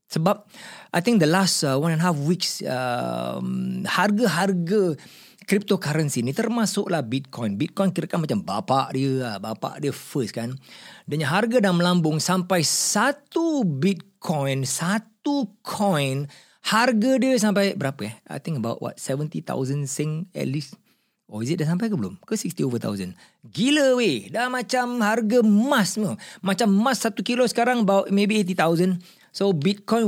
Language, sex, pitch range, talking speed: Malay, male, 130-200 Hz, 160 wpm